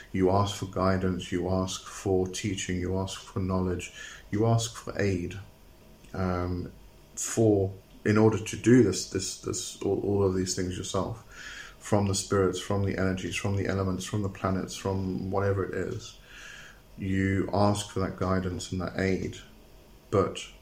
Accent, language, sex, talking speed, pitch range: British, English, male, 165 wpm, 95-105 Hz